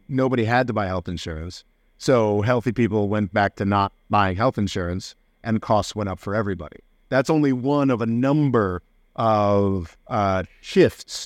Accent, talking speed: American, 165 wpm